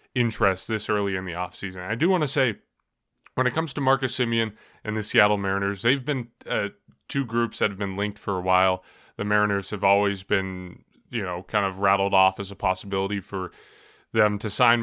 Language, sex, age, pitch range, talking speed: English, male, 20-39, 100-130 Hz, 205 wpm